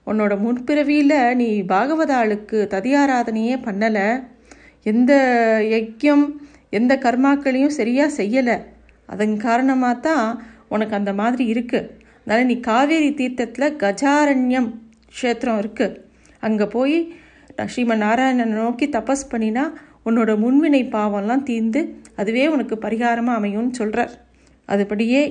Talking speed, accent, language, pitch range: 100 wpm, native, Tamil, 215-255 Hz